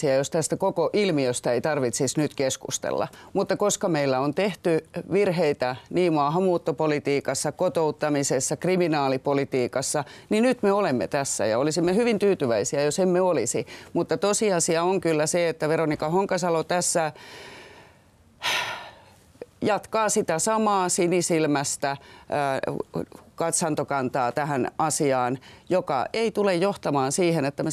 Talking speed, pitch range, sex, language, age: 115 wpm, 140-180 Hz, female, Finnish, 30-49